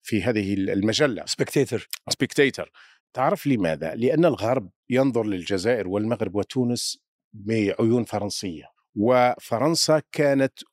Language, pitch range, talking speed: Arabic, 115-155 Hz, 90 wpm